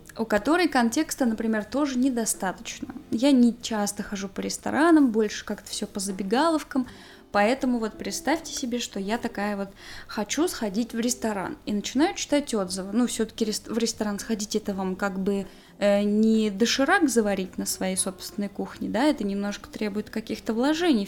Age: 20-39